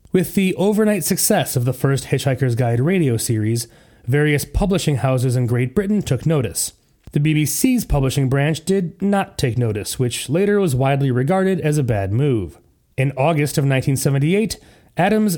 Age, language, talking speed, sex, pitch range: 30-49, English, 155 wpm, male, 125-170 Hz